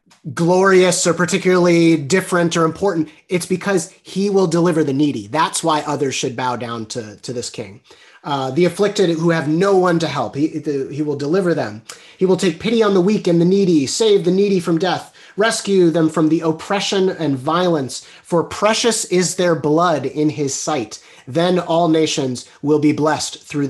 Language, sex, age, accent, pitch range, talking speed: English, male, 30-49, American, 140-180 Hz, 185 wpm